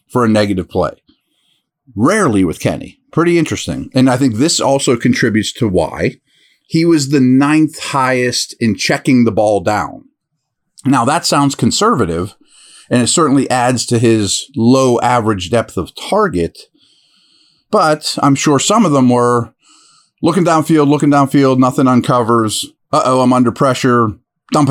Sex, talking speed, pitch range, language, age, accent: male, 145 wpm, 115-150 Hz, English, 40-59, American